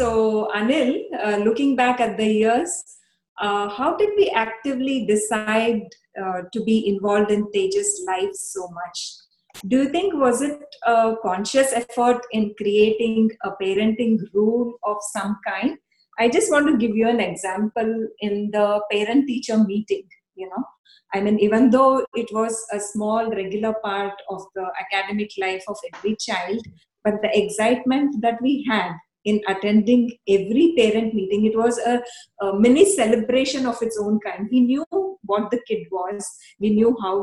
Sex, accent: female, Indian